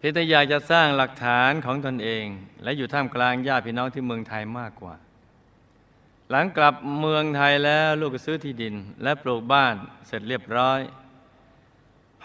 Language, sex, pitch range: Thai, male, 110-135 Hz